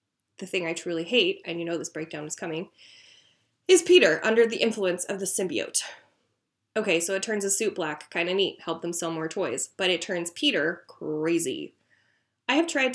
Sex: female